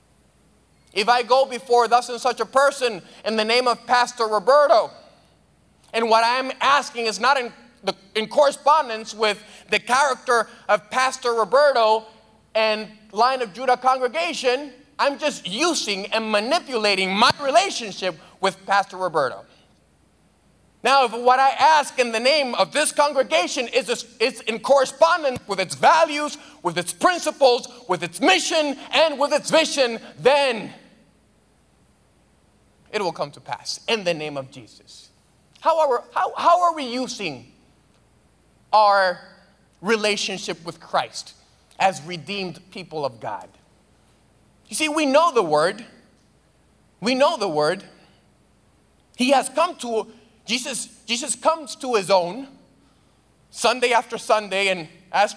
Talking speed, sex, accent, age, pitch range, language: 135 wpm, male, American, 30-49, 210-275 Hz, English